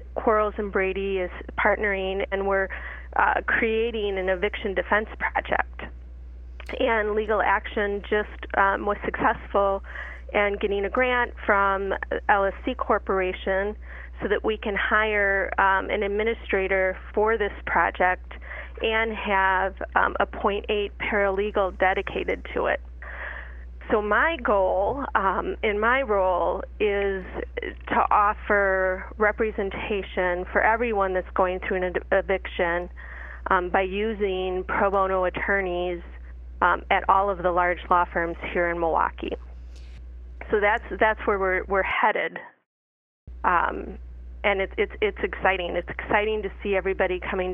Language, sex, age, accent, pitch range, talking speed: English, female, 30-49, American, 180-205 Hz, 125 wpm